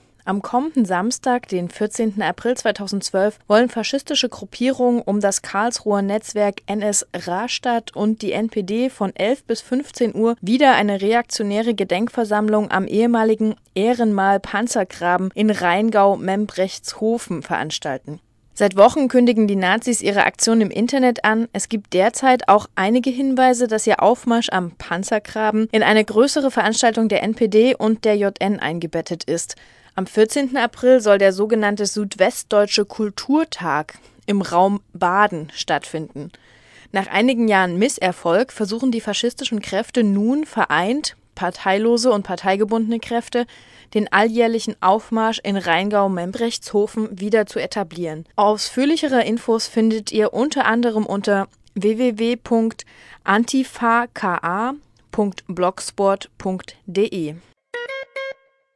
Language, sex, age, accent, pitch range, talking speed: German, female, 20-39, German, 195-235 Hz, 110 wpm